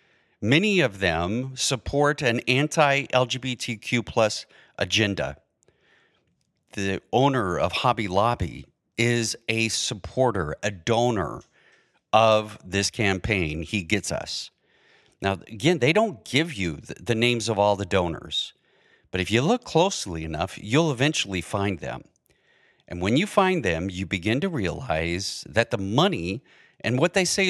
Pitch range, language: 100-150 Hz, English